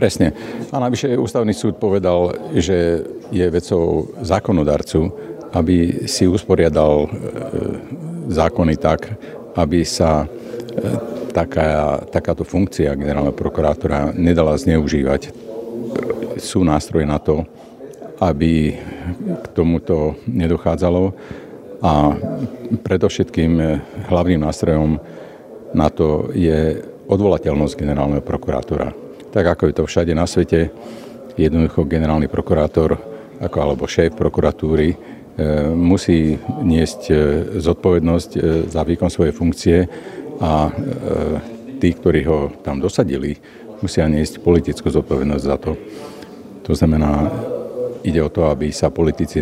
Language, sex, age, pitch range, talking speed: Slovak, male, 50-69, 75-90 Hz, 100 wpm